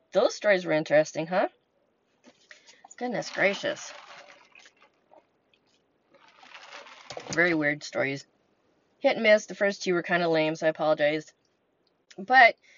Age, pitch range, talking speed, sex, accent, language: 30-49, 185-250 Hz, 115 wpm, female, American, English